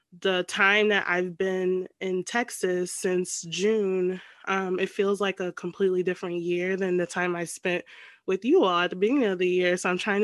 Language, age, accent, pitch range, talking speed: English, 20-39, American, 185-230 Hz, 200 wpm